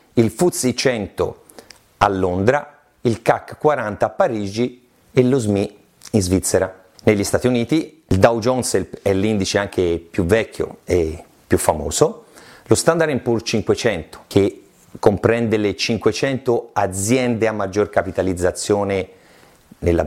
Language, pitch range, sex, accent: Italian, 100-140 Hz, male, native